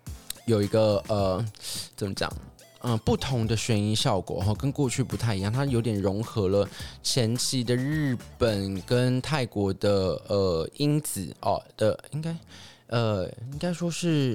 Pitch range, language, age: 100-140 Hz, Chinese, 20-39